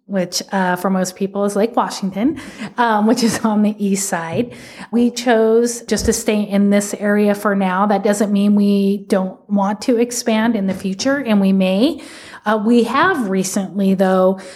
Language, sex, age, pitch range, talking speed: English, female, 30-49, 185-220 Hz, 180 wpm